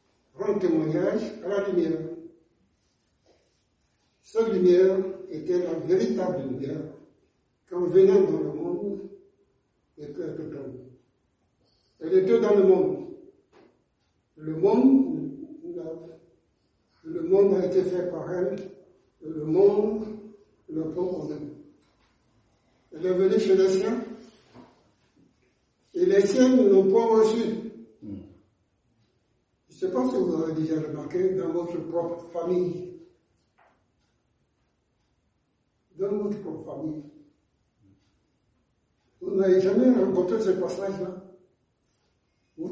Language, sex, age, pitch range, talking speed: French, male, 60-79, 165-280 Hz, 105 wpm